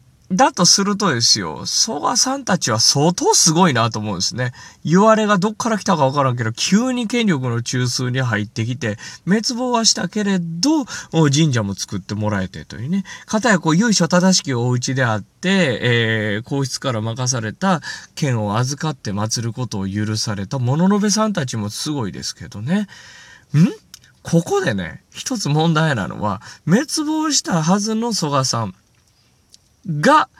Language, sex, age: Japanese, male, 20-39